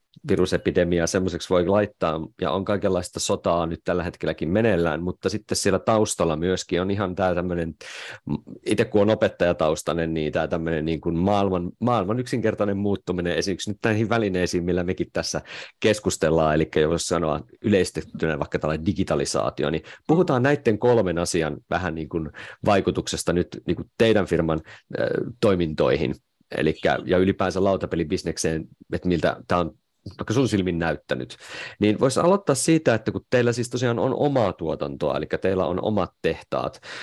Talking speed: 145 wpm